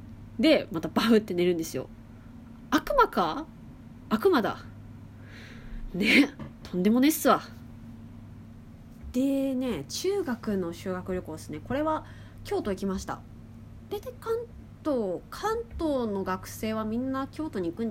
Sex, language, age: female, Japanese, 20-39